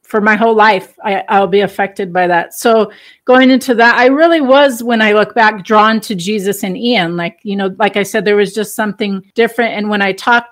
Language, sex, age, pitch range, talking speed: English, female, 40-59, 195-235 Hz, 235 wpm